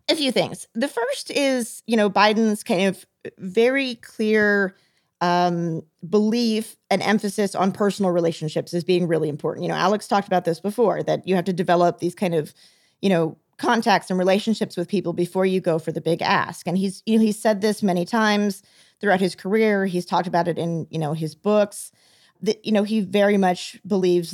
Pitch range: 170-210 Hz